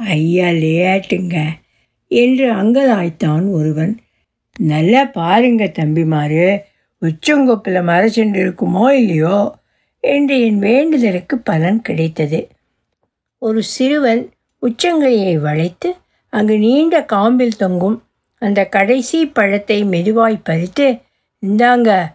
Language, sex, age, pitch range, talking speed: Tamil, female, 60-79, 180-255 Hz, 90 wpm